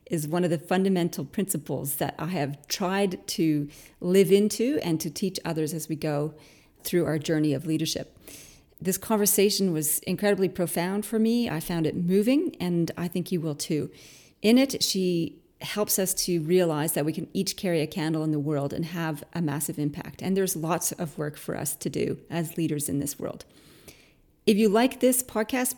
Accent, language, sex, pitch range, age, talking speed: American, English, female, 160-190 Hz, 40-59, 195 wpm